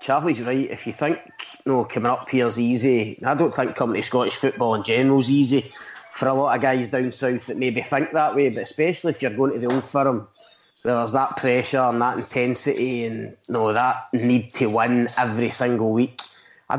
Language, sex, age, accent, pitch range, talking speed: English, male, 20-39, British, 120-140 Hz, 220 wpm